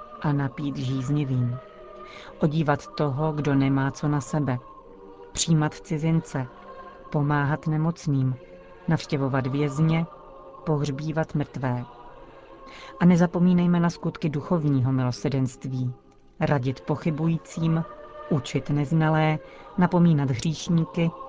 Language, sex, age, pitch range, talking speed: Czech, female, 40-59, 135-165 Hz, 85 wpm